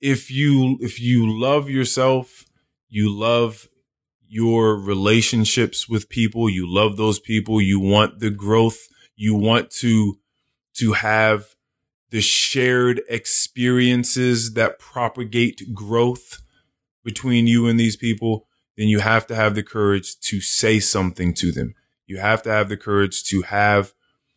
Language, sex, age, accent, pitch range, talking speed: English, male, 20-39, American, 105-125 Hz, 140 wpm